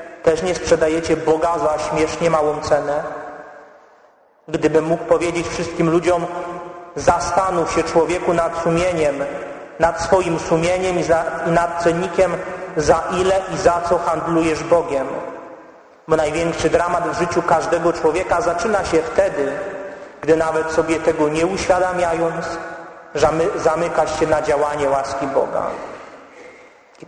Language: Polish